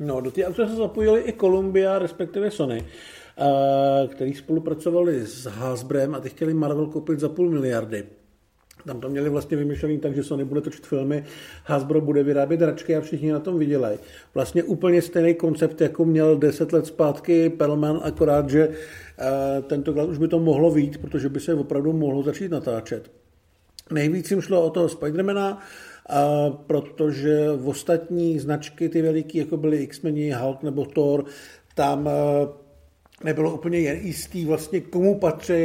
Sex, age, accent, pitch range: male, 50-69, native, 130-160 Hz